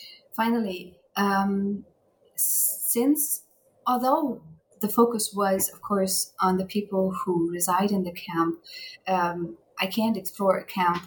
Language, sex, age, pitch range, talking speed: English, female, 30-49, 180-210 Hz, 125 wpm